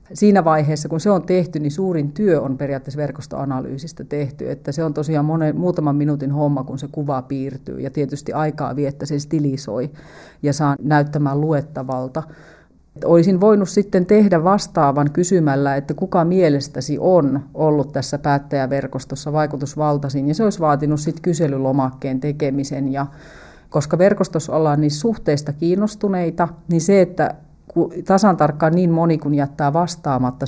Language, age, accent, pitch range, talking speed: Finnish, 30-49, native, 135-160 Hz, 145 wpm